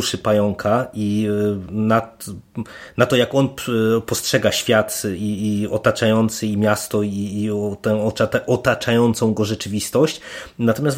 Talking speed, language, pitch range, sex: 100 wpm, Polish, 105-120 Hz, male